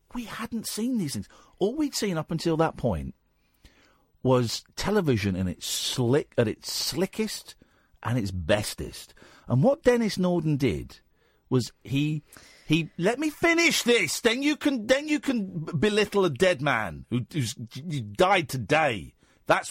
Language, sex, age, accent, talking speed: English, male, 50-69, British, 155 wpm